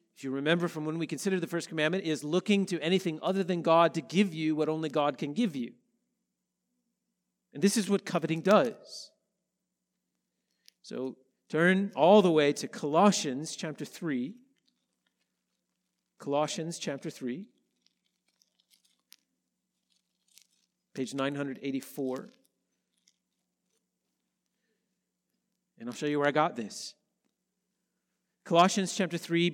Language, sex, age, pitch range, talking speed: English, male, 40-59, 155-200 Hz, 115 wpm